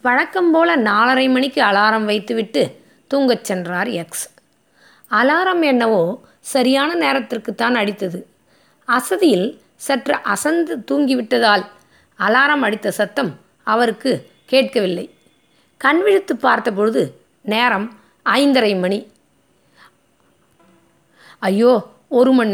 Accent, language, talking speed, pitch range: native, Tamil, 85 wpm, 210-270 Hz